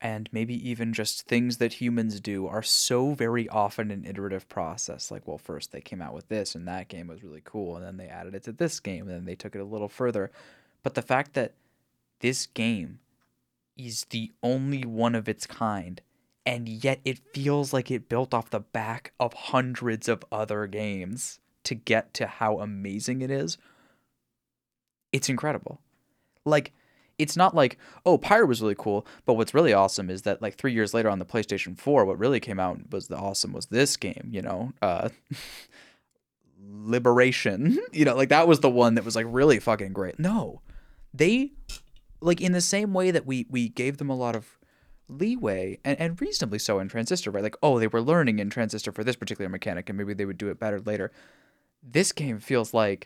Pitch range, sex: 105-130 Hz, male